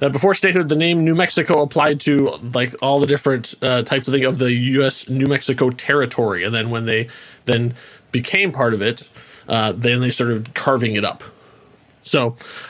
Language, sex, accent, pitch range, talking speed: English, male, American, 130-180 Hz, 185 wpm